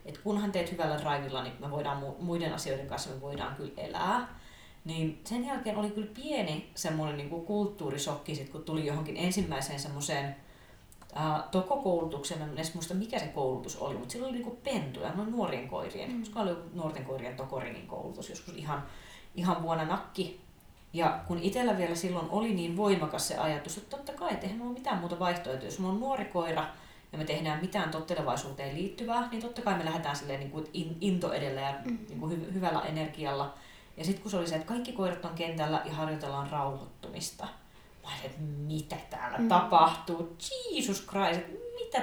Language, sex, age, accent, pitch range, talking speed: Finnish, female, 30-49, native, 150-205 Hz, 160 wpm